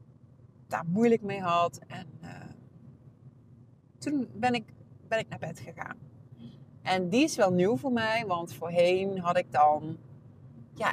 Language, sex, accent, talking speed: Dutch, female, Dutch, 150 wpm